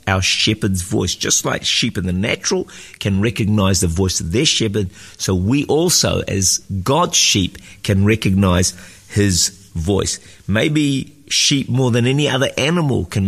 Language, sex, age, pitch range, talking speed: English, male, 50-69, 95-115 Hz, 155 wpm